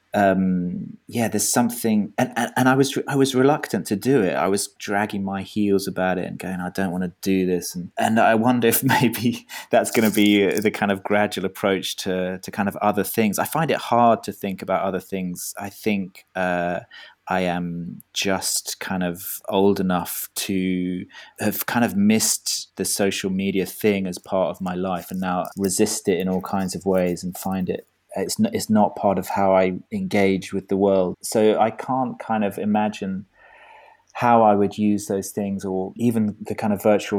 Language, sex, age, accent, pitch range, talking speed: English, male, 30-49, British, 95-105 Hz, 205 wpm